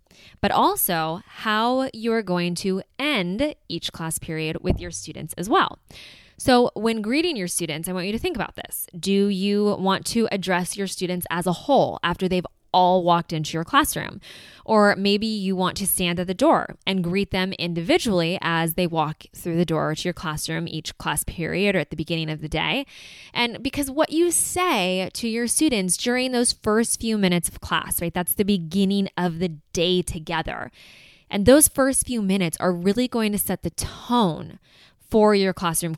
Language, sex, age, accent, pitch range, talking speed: English, female, 20-39, American, 170-225 Hz, 190 wpm